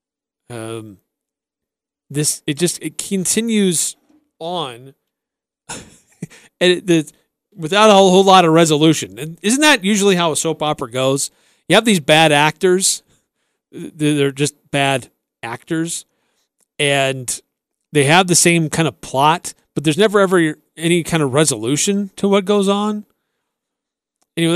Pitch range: 140-180 Hz